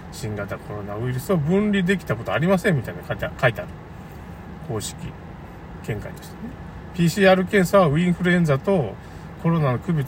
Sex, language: male, Japanese